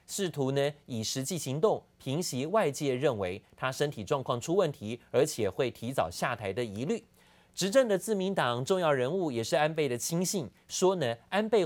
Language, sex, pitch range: Chinese, male, 125-175 Hz